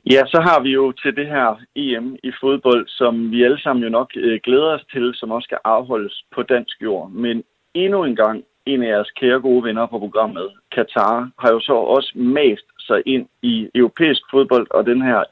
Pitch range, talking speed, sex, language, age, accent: 115-150 Hz, 205 wpm, male, Danish, 50-69, native